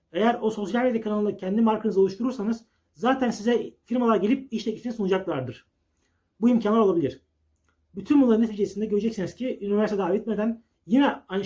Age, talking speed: 40-59, 140 wpm